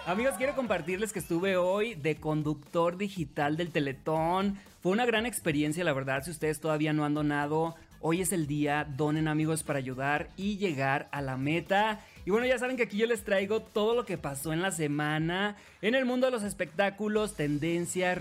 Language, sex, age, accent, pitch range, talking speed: Spanish, male, 30-49, Mexican, 150-210 Hz, 195 wpm